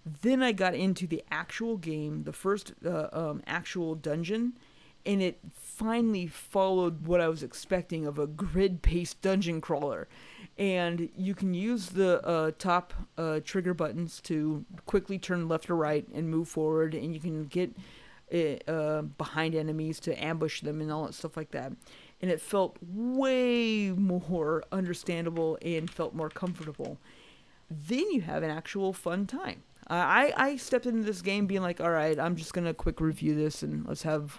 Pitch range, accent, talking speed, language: 155-195 Hz, American, 170 wpm, English